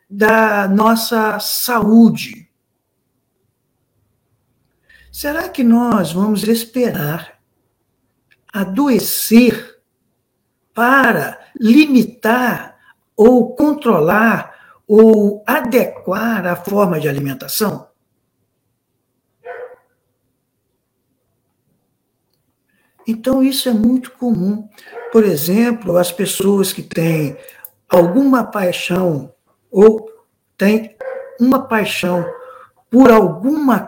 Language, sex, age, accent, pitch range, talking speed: Portuguese, male, 60-79, Brazilian, 170-245 Hz, 65 wpm